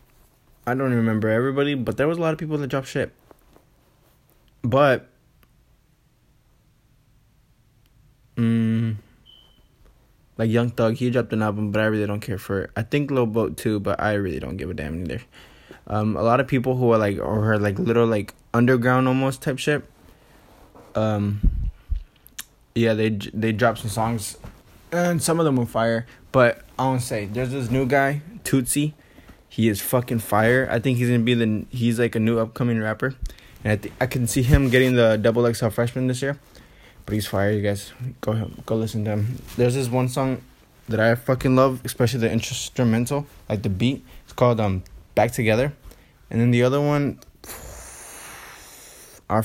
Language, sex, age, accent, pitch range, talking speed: English, male, 20-39, American, 105-130 Hz, 180 wpm